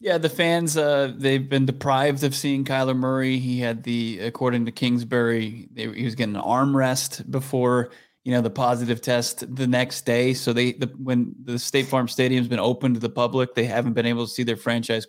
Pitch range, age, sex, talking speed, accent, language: 120-135 Hz, 20-39, male, 210 wpm, American, English